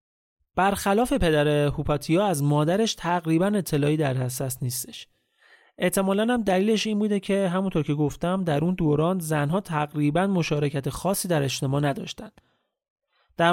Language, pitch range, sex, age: Persian, 145-190 Hz, male, 30-49